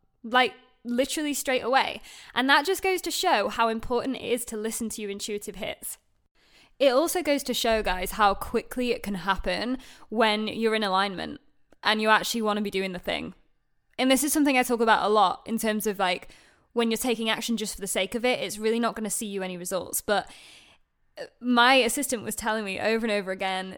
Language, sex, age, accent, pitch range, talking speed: English, female, 10-29, British, 210-260 Hz, 210 wpm